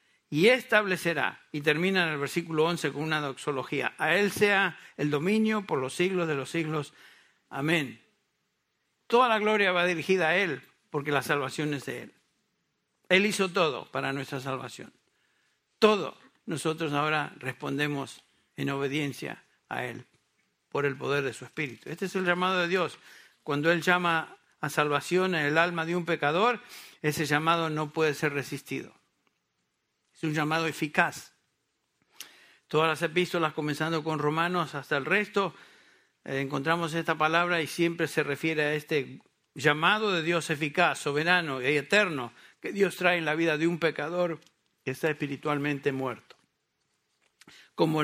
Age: 60-79